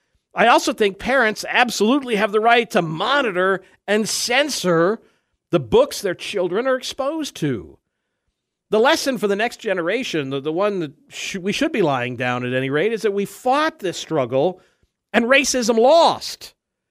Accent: American